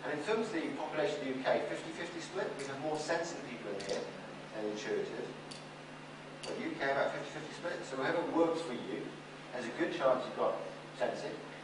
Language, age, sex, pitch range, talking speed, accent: English, 50-69, male, 130-165 Hz, 195 wpm, British